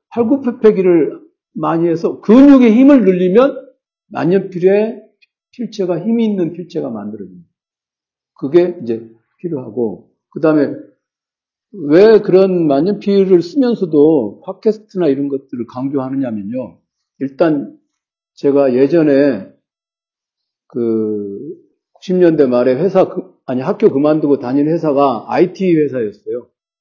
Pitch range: 140-220 Hz